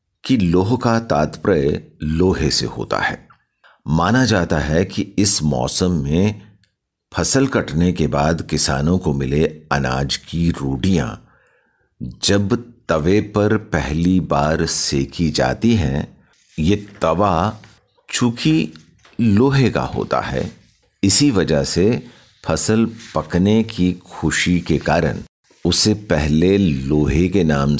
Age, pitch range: 50-69, 80-105 Hz